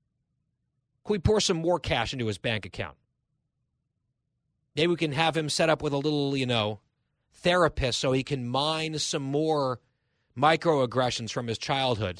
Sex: male